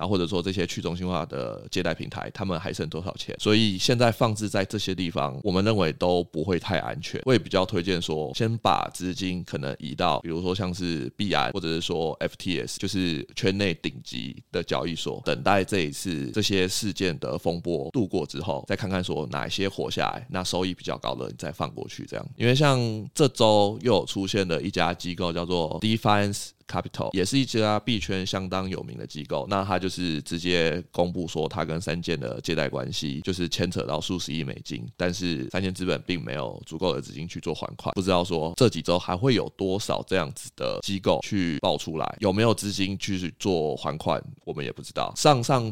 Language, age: Chinese, 20-39